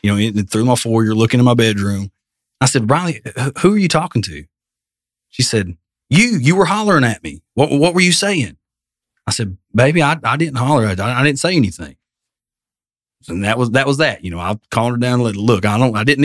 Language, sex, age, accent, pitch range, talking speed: English, male, 30-49, American, 100-130 Hz, 235 wpm